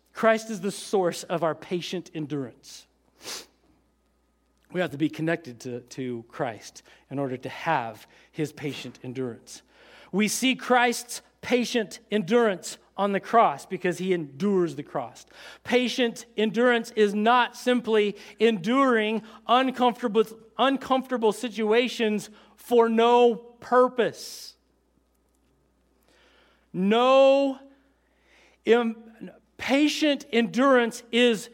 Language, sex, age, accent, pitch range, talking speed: English, male, 40-59, American, 210-275 Hz, 100 wpm